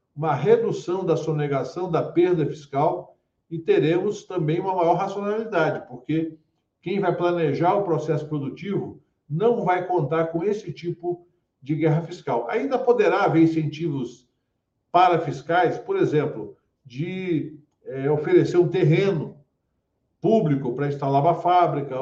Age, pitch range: 50-69, 155-185 Hz